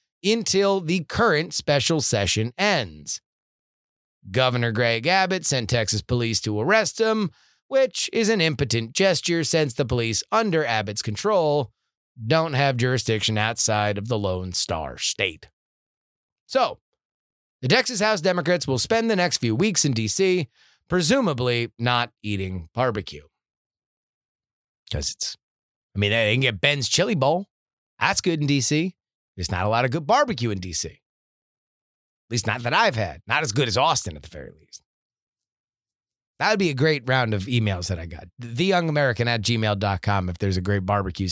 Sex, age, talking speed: male, 30-49, 160 wpm